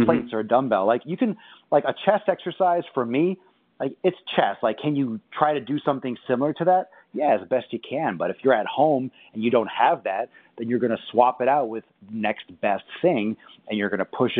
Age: 30-49